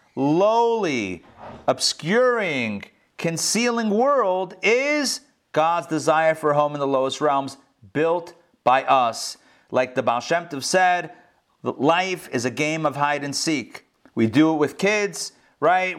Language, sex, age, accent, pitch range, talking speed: English, male, 30-49, American, 145-200 Hz, 140 wpm